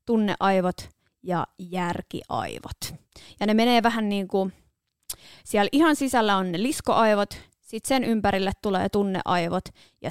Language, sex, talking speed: Finnish, female, 125 wpm